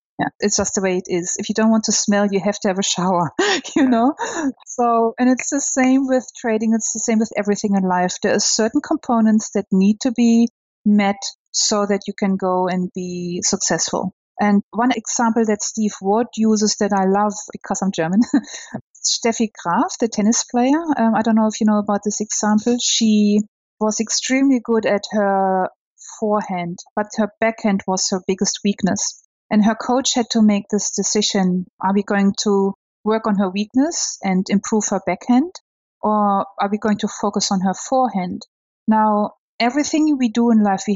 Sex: female